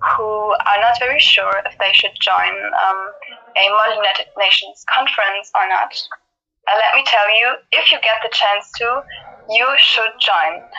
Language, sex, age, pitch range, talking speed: Indonesian, female, 20-39, 205-235 Hz, 165 wpm